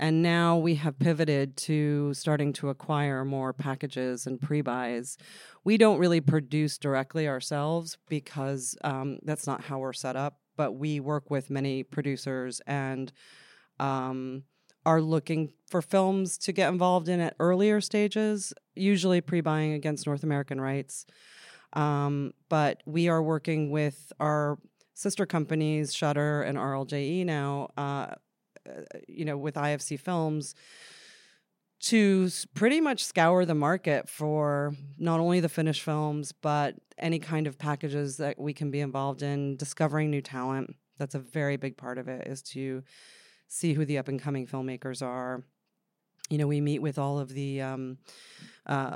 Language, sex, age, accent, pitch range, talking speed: English, female, 30-49, American, 140-165 Hz, 145 wpm